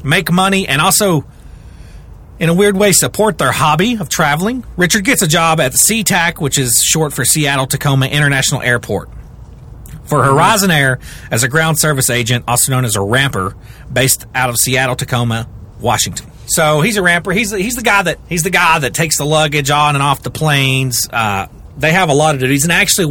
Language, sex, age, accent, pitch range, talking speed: English, male, 30-49, American, 115-165 Hz, 195 wpm